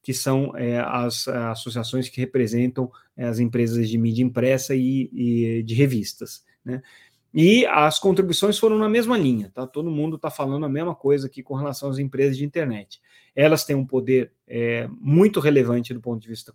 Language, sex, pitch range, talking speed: Portuguese, male, 120-145 Hz, 185 wpm